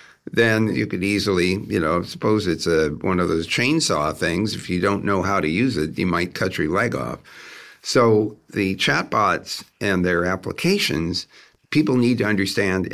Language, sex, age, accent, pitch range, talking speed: English, male, 60-79, American, 95-130 Hz, 170 wpm